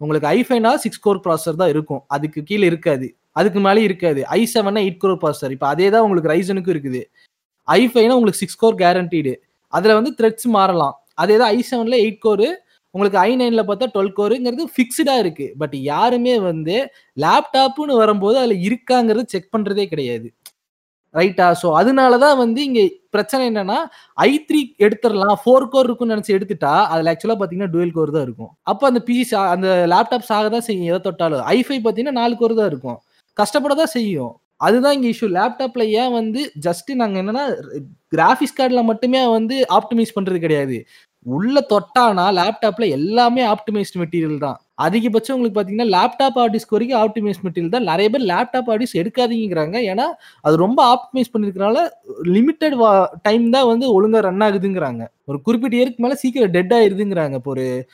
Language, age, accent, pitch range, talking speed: Tamil, 20-39, native, 180-245 Hz, 160 wpm